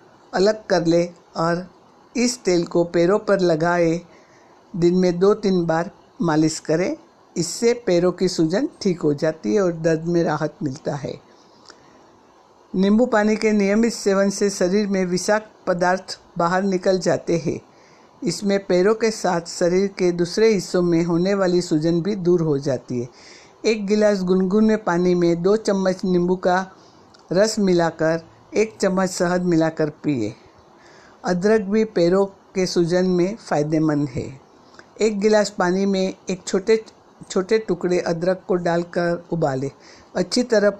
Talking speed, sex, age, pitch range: 145 wpm, female, 60-79, 170-205 Hz